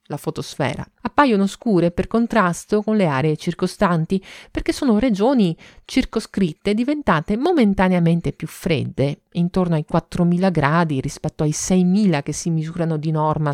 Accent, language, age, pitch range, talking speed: native, Italian, 40-59, 160-210 Hz, 135 wpm